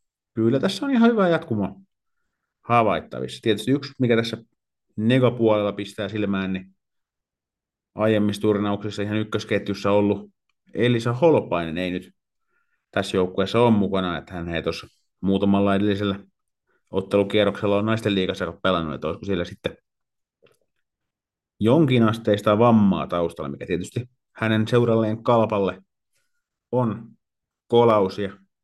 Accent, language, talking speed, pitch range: native, Finnish, 110 wpm, 95-115 Hz